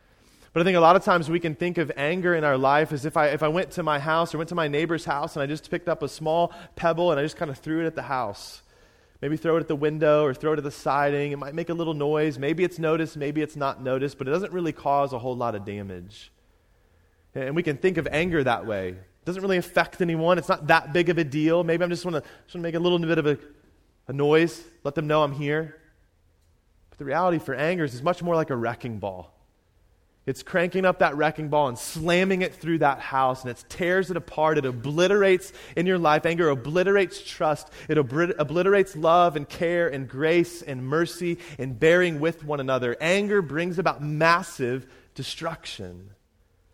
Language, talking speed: English, 230 wpm